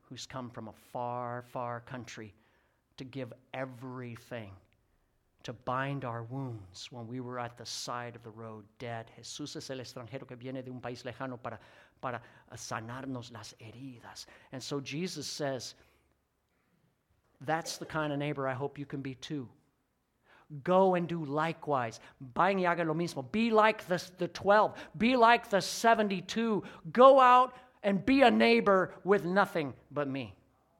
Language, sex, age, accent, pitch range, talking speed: English, male, 50-69, American, 125-195 Hz, 150 wpm